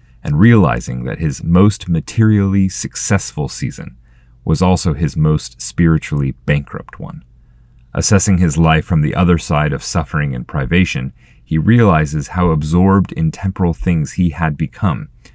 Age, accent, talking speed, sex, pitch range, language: 30-49, American, 140 wpm, male, 70-95 Hz, English